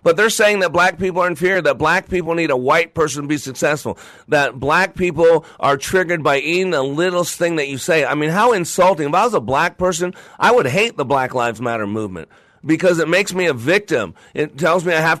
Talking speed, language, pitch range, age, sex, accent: 235 wpm, English, 150-180 Hz, 40-59, male, American